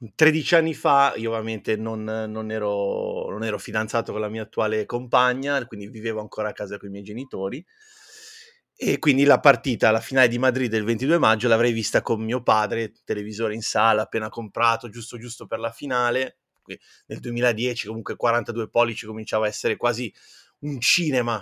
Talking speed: 175 wpm